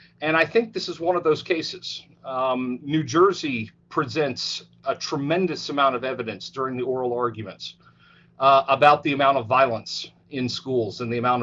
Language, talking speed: English, 175 wpm